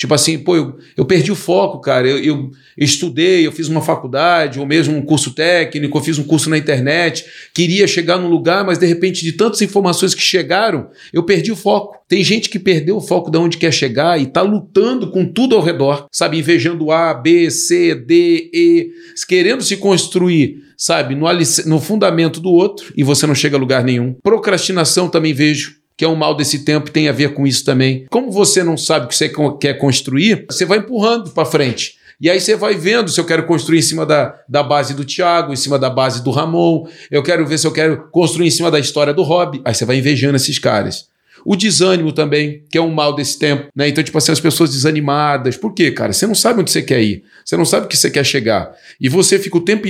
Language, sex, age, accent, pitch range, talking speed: Portuguese, male, 40-59, Brazilian, 145-185 Hz, 230 wpm